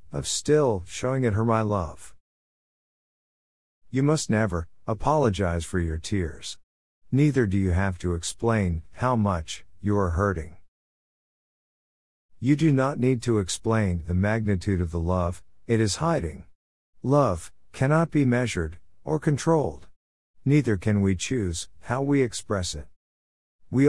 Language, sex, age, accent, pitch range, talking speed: Greek, male, 50-69, American, 85-125 Hz, 135 wpm